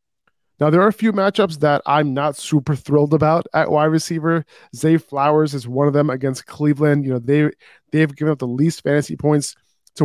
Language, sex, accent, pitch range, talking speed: English, male, American, 135-160 Hz, 215 wpm